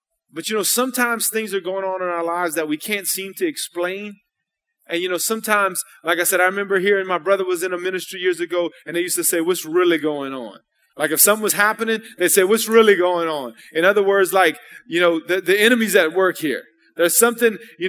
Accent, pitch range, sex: American, 180-230 Hz, male